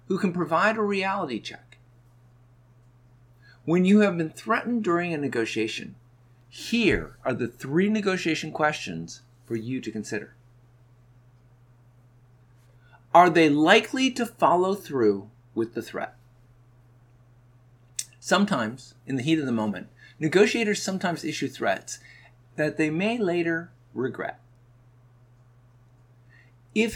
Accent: American